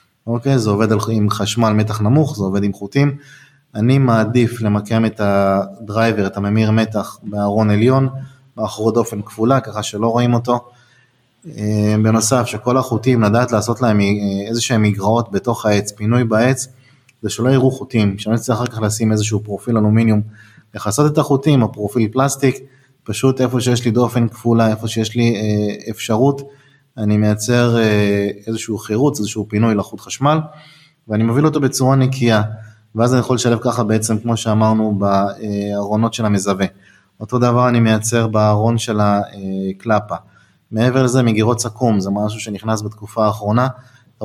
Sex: male